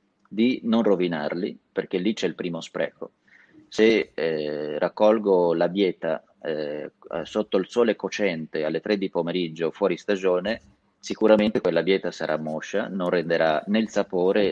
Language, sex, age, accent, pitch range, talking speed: Italian, male, 30-49, native, 90-110 Hz, 145 wpm